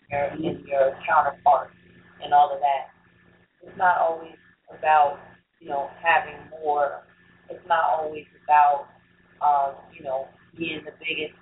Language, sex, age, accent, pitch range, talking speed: English, female, 30-49, American, 140-165 Hz, 130 wpm